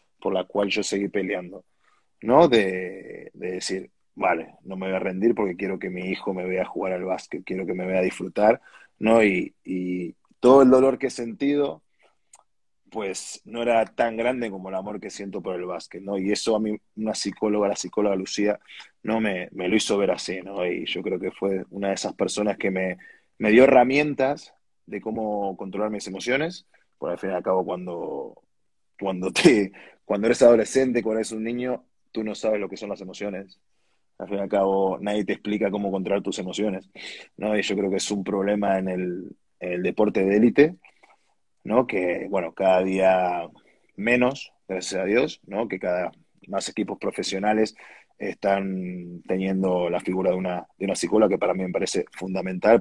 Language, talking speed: Spanish, 195 wpm